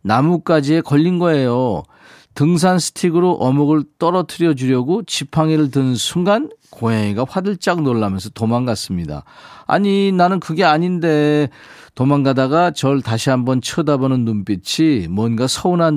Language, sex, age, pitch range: Korean, male, 40-59, 115-165 Hz